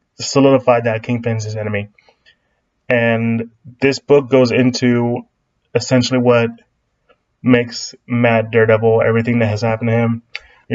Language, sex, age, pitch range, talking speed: English, male, 20-39, 115-135 Hz, 125 wpm